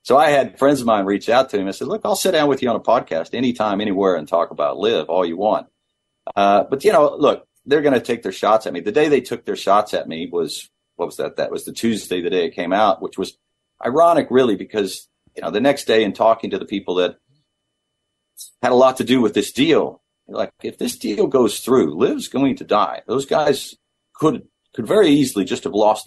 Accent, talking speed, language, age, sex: American, 245 wpm, English, 40-59, male